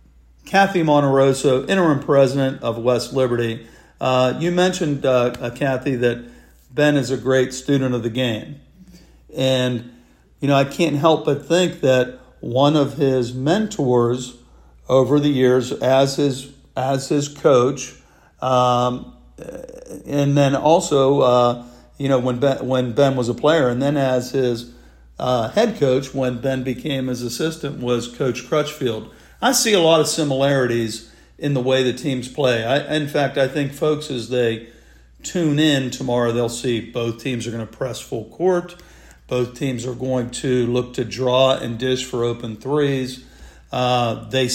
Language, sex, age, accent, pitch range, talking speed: English, male, 50-69, American, 120-145 Hz, 160 wpm